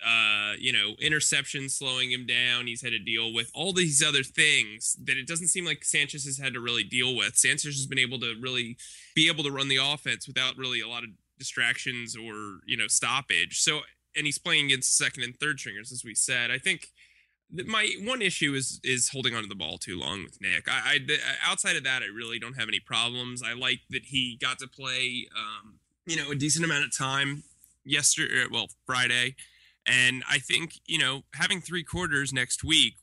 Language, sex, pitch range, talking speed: English, male, 120-145 Hz, 215 wpm